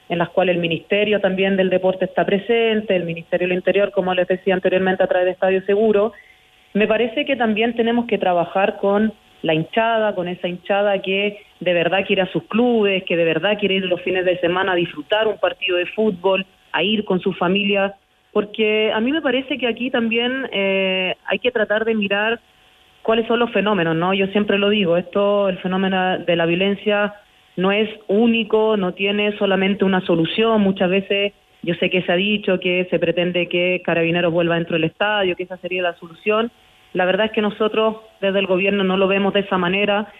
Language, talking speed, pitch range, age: Spanish, 205 wpm, 180-210 Hz, 30-49